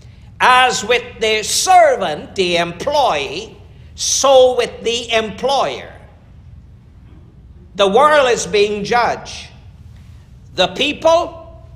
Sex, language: male, English